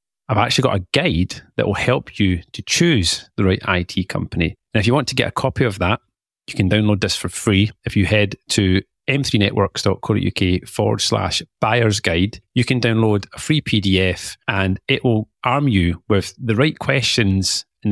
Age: 30-49